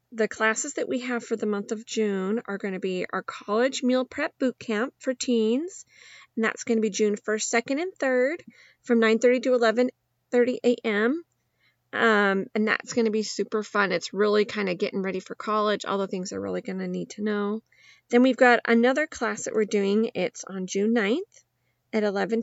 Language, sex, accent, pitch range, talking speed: English, female, American, 205-255 Hz, 210 wpm